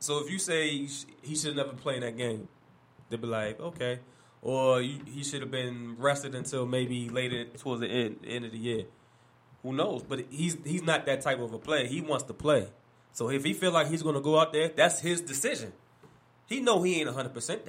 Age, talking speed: 20-39, 225 wpm